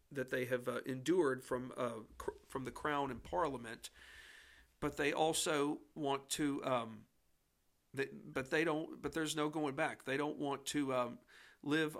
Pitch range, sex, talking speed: 125-150 Hz, male, 170 wpm